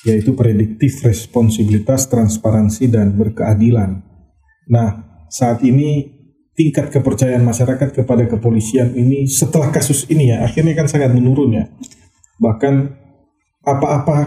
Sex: male